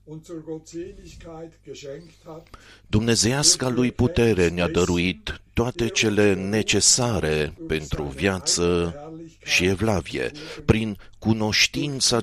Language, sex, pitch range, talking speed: Romanian, male, 100-130 Hz, 70 wpm